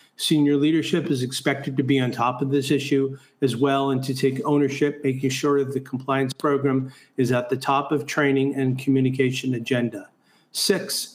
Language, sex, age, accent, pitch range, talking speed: English, male, 50-69, American, 130-145 Hz, 180 wpm